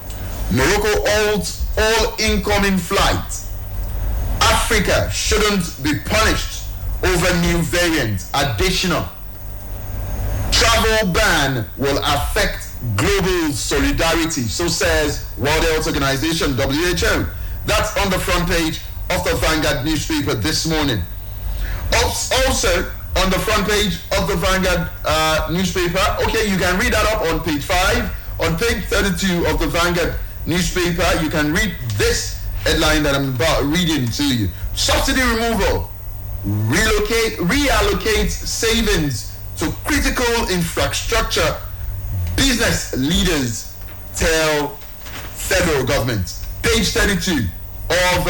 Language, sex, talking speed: English, male, 110 wpm